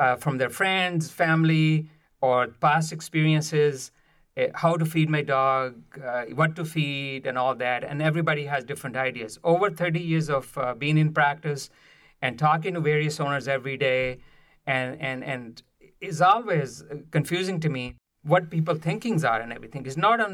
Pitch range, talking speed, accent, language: 130-165 Hz, 170 wpm, Indian, English